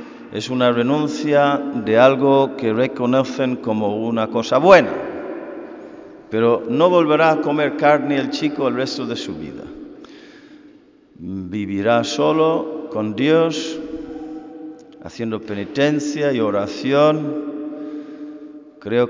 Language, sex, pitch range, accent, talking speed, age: Spanish, male, 110-150 Hz, Spanish, 105 wpm, 50-69